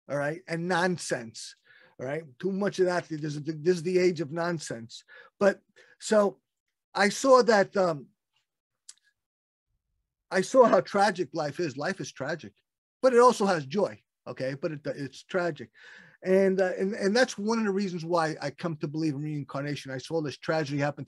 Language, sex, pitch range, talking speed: English, male, 140-185 Hz, 175 wpm